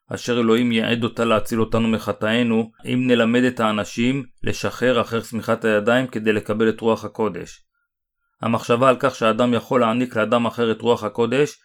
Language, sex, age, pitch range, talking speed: Hebrew, male, 30-49, 110-125 Hz, 160 wpm